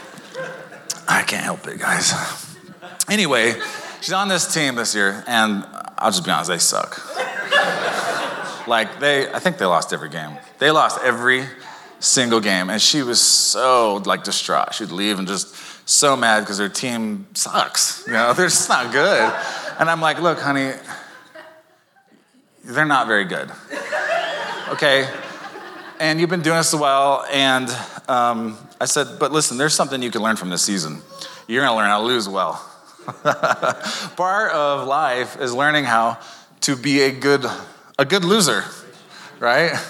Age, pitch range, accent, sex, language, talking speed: 30-49, 115-160 Hz, American, male, English, 160 wpm